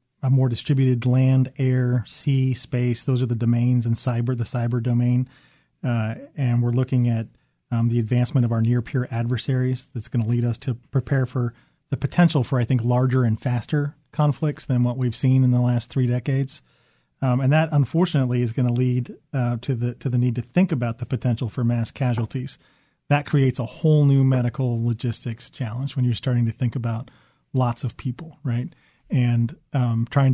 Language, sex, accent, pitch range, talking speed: English, male, American, 120-135 Hz, 190 wpm